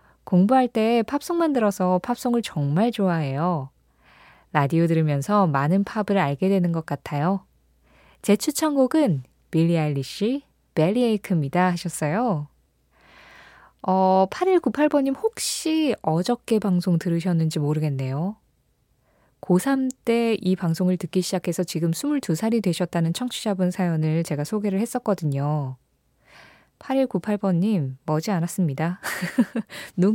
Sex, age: female, 20-39